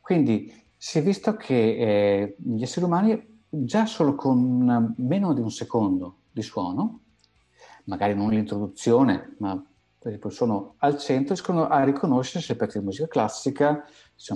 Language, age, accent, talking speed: Italian, 50-69, native, 160 wpm